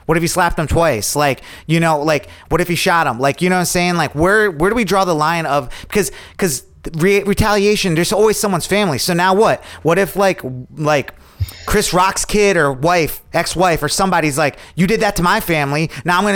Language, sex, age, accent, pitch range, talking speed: English, male, 30-49, American, 140-175 Hz, 225 wpm